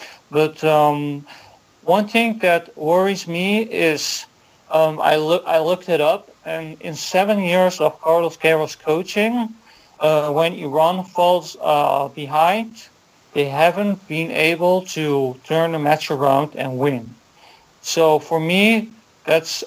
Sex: male